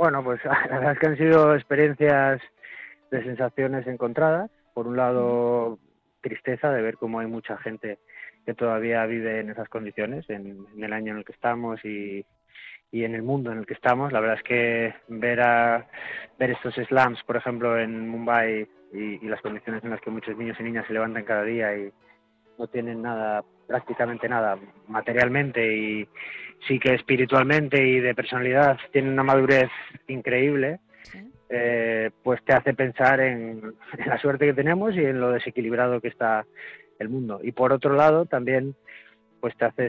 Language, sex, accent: Spanish, male, Spanish